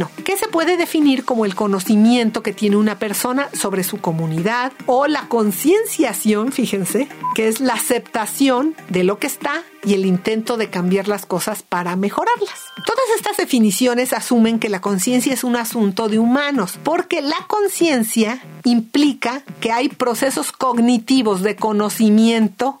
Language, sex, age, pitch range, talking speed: Spanish, female, 50-69, 205-265 Hz, 155 wpm